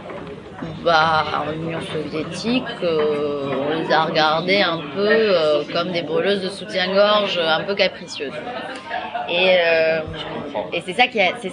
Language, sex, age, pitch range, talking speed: French, female, 20-39, 165-225 Hz, 125 wpm